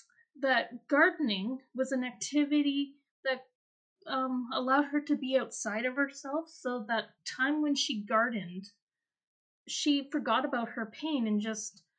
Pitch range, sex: 210-260 Hz, female